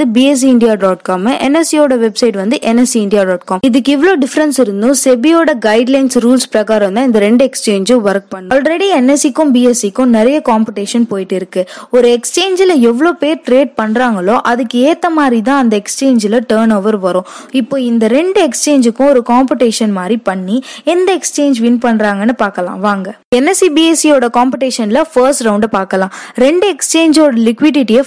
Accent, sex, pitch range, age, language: native, female, 205-275 Hz, 20-39, Tamil